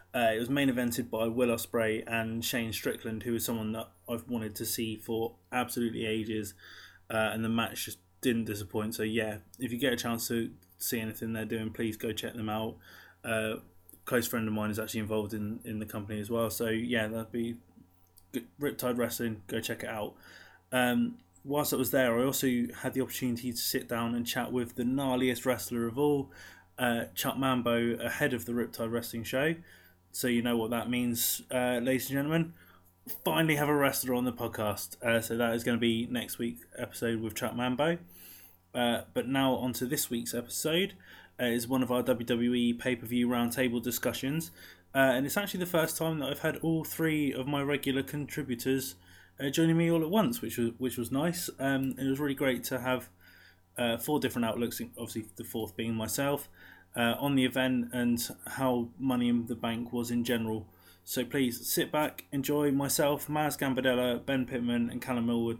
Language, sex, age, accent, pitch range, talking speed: English, male, 20-39, British, 110-130 Hz, 200 wpm